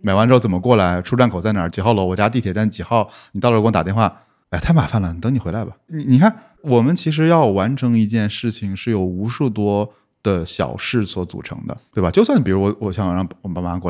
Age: 20-39